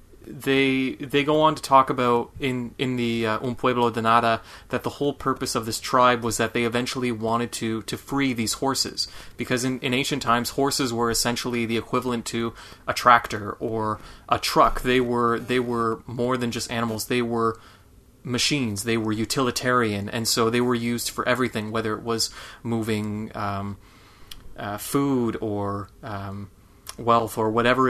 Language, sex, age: English, male, 30-49